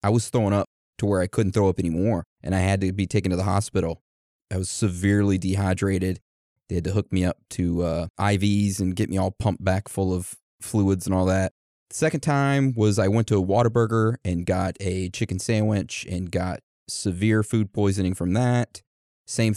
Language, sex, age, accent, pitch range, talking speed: English, male, 30-49, American, 95-110 Hz, 200 wpm